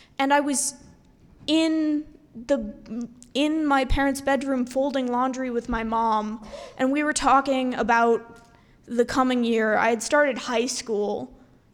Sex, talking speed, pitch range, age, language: female, 140 wpm, 240-275 Hz, 10-29, English